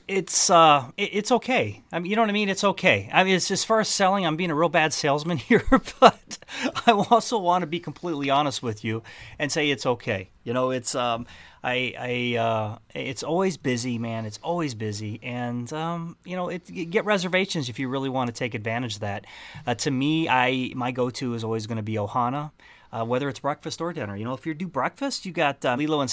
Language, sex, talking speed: English, male, 235 wpm